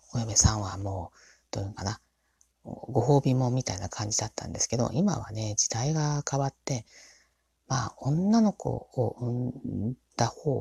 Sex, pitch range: female, 115-140 Hz